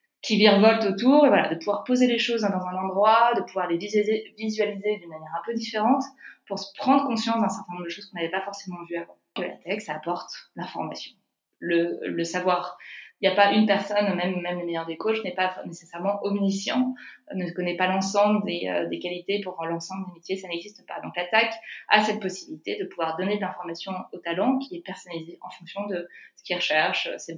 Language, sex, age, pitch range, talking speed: French, female, 20-39, 175-215 Hz, 215 wpm